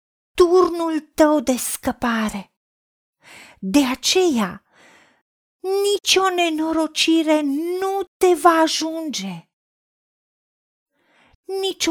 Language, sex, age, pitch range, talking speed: Romanian, female, 40-59, 210-320 Hz, 70 wpm